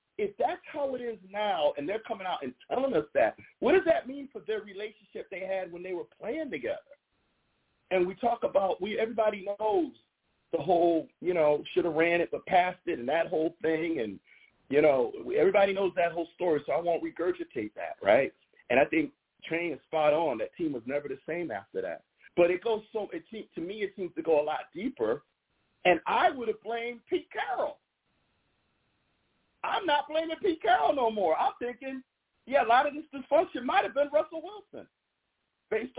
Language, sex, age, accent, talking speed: English, male, 40-59, American, 205 wpm